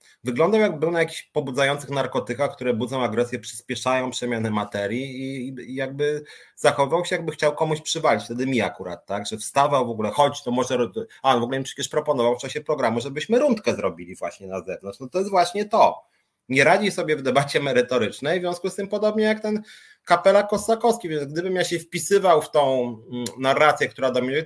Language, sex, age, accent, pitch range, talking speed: Polish, male, 30-49, native, 115-175 Hz, 195 wpm